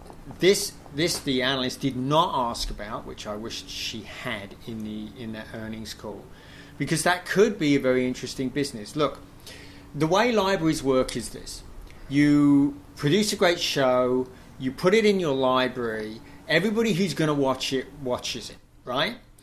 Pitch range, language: 115-160 Hz, English